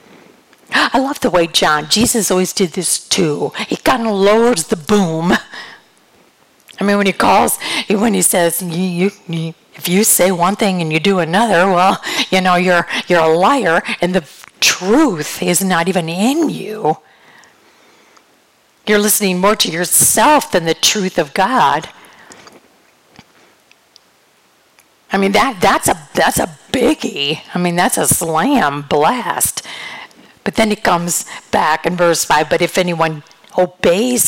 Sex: female